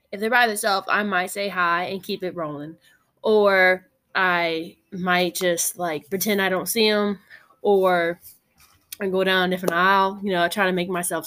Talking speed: 185 wpm